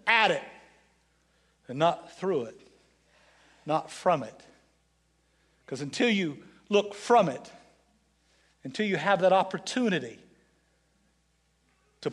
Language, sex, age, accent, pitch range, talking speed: English, male, 60-79, American, 160-205 Hz, 105 wpm